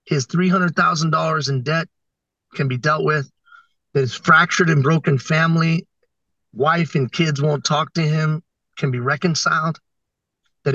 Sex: male